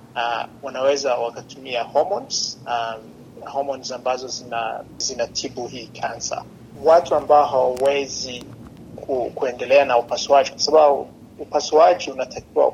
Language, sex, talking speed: Swahili, male, 105 wpm